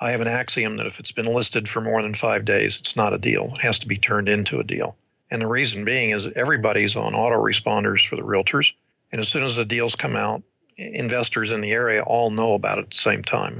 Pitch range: 110-125 Hz